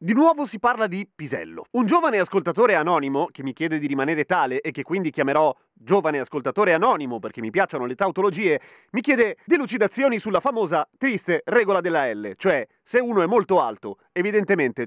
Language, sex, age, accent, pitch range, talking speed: Italian, male, 30-49, native, 150-210 Hz, 180 wpm